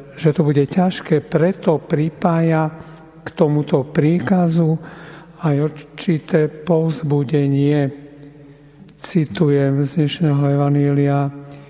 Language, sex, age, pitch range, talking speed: Slovak, male, 50-69, 140-160 Hz, 80 wpm